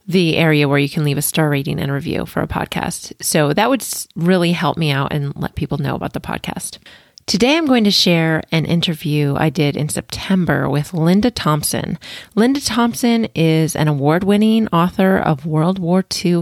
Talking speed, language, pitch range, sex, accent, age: 190 wpm, English, 150-185 Hz, female, American, 30-49